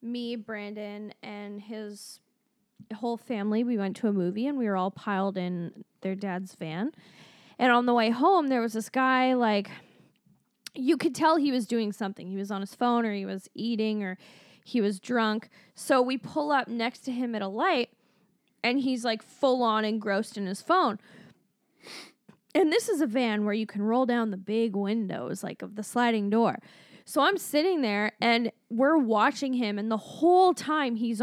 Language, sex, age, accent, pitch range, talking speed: English, female, 10-29, American, 215-265 Hz, 190 wpm